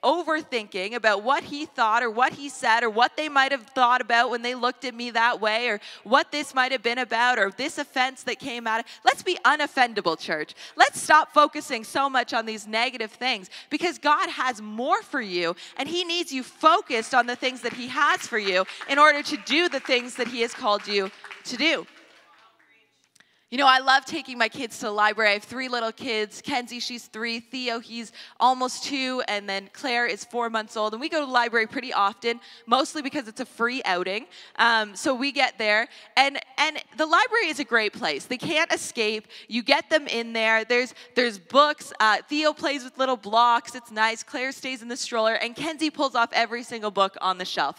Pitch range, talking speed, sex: 225-280 Hz, 215 wpm, female